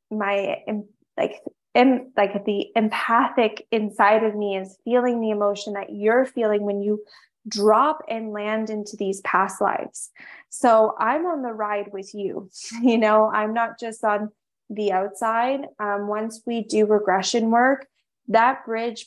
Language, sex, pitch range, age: English, female, 210-235 Hz, 20-39